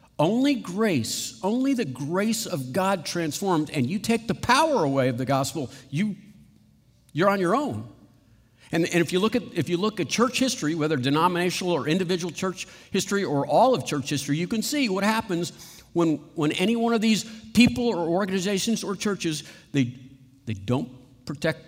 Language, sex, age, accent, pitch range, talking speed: English, male, 50-69, American, 130-190 Hz, 180 wpm